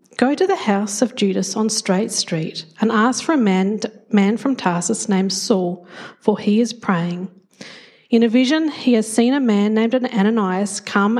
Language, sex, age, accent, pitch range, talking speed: English, female, 40-59, Australian, 195-245 Hz, 180 wpm